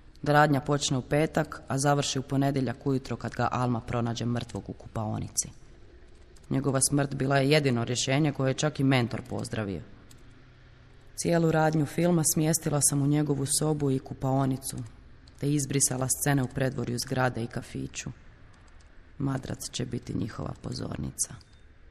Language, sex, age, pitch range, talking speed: Croatian, female, 30-49, 110-140 Hz, 140 wpm